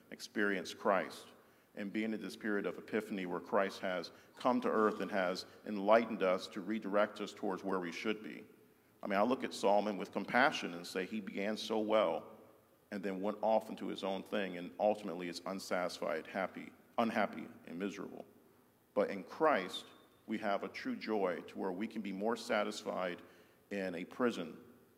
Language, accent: English, American